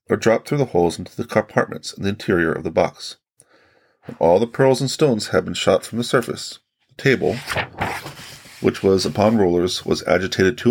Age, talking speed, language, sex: 30-49, 190 wpm, English, male